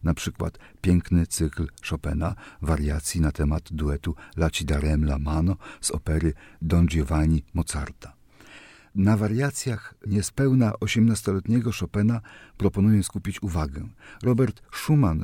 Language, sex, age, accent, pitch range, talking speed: Polish, male, 50-69, native, 85-115 Hz, 110 wpm